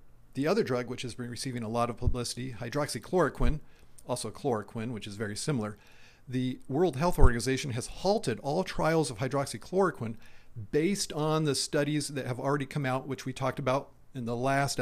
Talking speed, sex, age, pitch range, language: 180 wpm, male, 40-59, 120-150 Hz, English